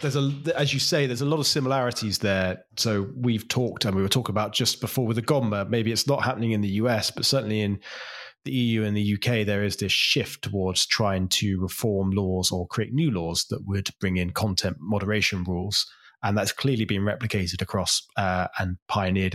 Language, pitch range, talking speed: English, 95-120 Hz, 210 wpm